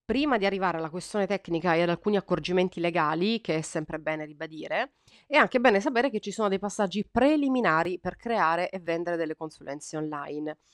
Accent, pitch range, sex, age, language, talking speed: native, 170-210 Hz, female, 30-49, Italian, 185 wpm